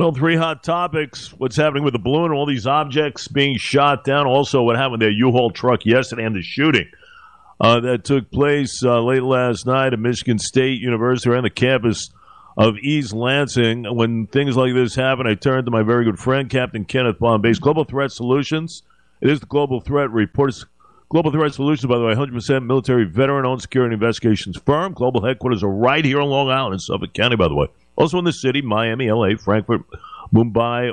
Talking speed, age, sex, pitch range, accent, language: 200 wpm, 50-69, male, 120-145 Hz, American, English